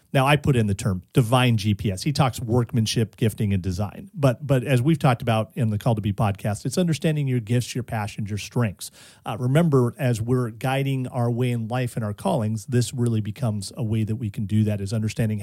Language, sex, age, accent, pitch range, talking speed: English, male, 40-59, American, 110-145 Hz, 225 wpm